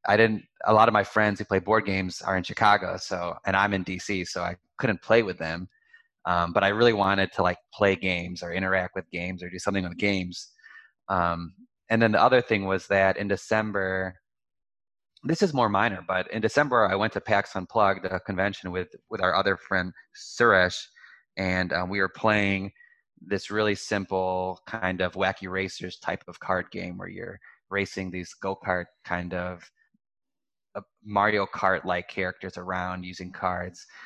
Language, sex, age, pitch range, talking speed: English, male, 20-39, 95-105 Hz, 180 wpm